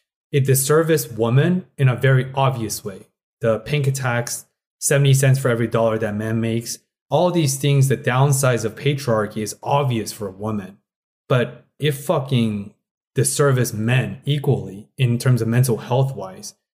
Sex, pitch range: male, 115-135 Hz